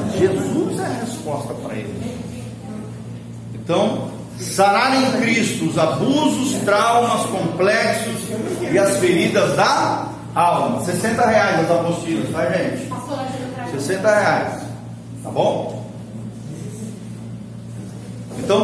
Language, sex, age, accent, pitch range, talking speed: Portuguese, male, 40-59, Brazilian, 170-225 Hz, 95 wpm